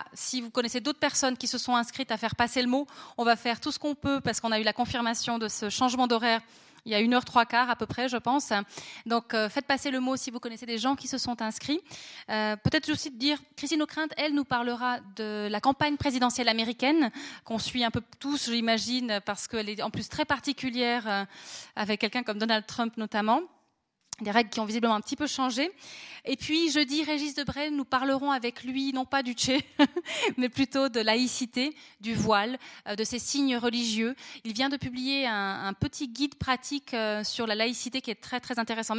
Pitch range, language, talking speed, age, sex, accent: 220-270 Hz, French, 215 wpm, 20-39, female, French